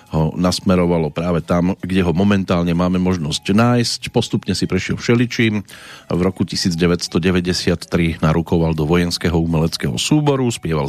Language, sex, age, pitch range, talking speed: Slovak, male, 40-59, 80-100 Hz, 130 wpm